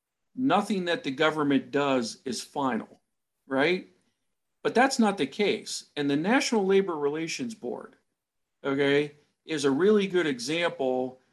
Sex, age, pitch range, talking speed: male, 50-69, 140-200 Hz, 130 wpm